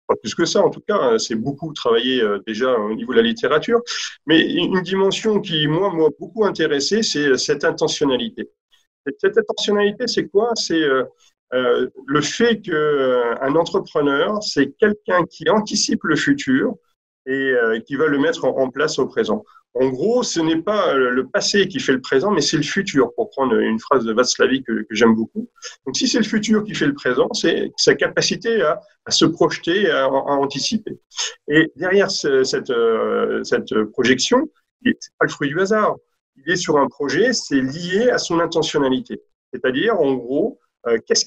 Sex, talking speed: male, 180 wpm